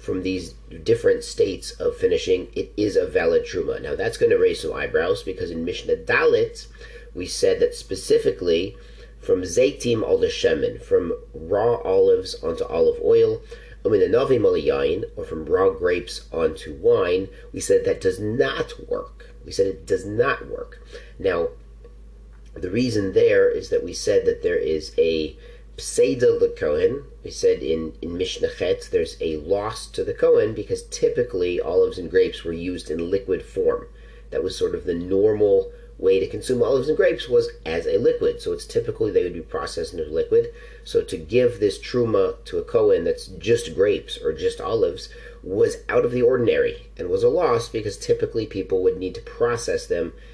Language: English